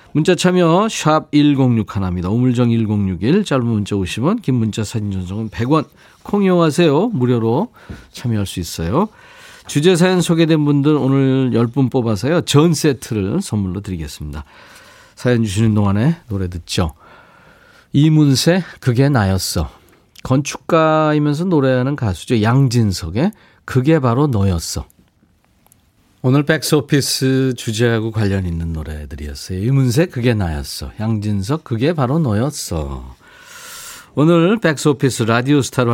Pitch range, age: 100-150 Hz, 40-59